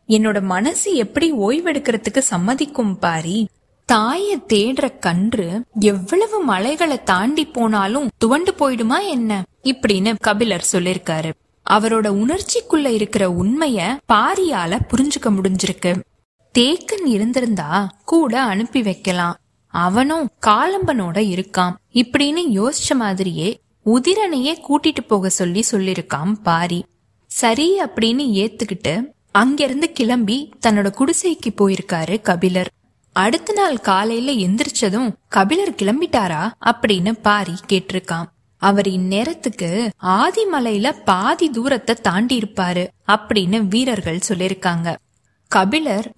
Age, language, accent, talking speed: 20-39, Tamil, native, 90 wpm